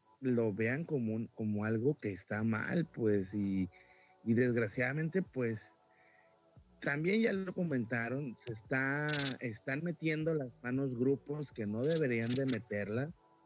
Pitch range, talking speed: 110-150 Hz, 135 wpm